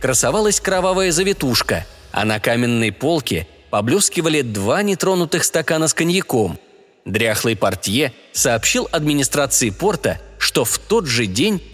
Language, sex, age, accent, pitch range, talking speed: Russian, male, 20-39, native, 120-190 Hz, 120 wpm